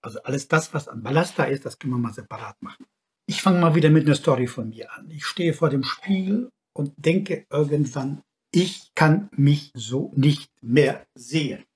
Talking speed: 200 wpm